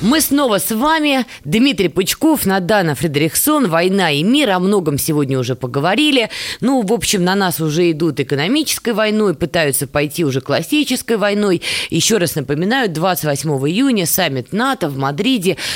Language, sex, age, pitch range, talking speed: Russian, female, 20-39, 150-225 Hz, 150 wpm